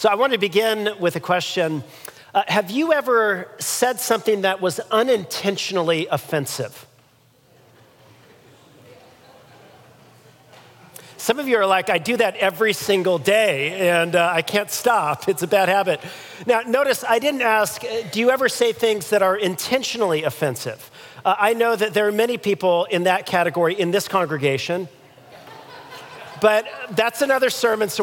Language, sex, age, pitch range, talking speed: English, male, 40-59, 185-230 Hz, 150 wpm